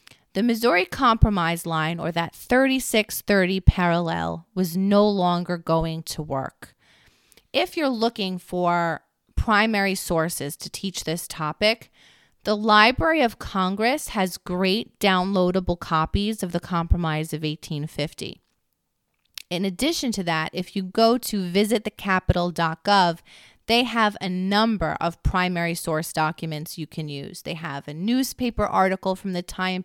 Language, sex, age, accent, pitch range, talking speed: English, female, 30-49, American, 165-205 Hz, 130 wpm